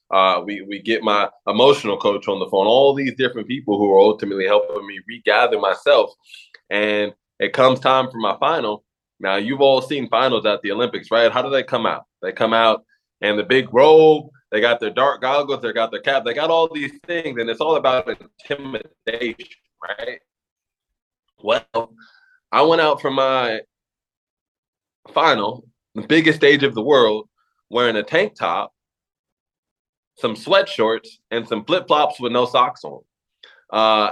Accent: American